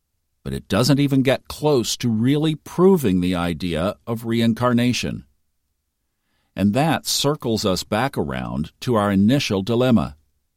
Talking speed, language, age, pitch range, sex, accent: 130 wpm, English, 50-69, 85-130 Hz, male, American